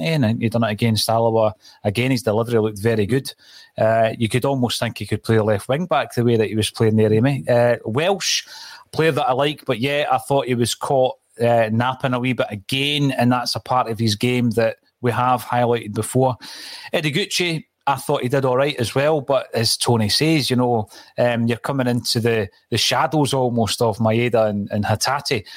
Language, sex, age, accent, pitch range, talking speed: English, male, 30-49, British, 115-135 Hz, 210 wpm